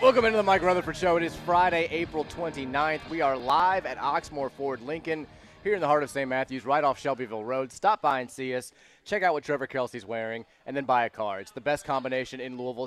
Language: English